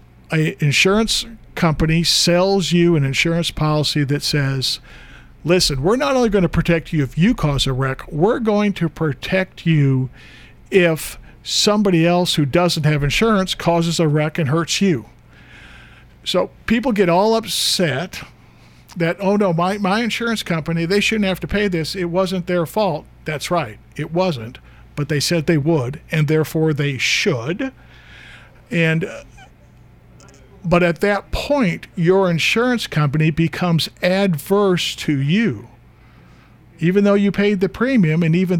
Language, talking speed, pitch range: English, 150 wpm, 155-195 Hz